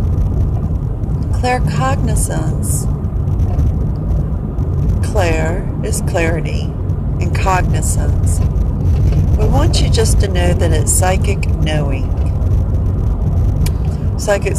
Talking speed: 75 wpm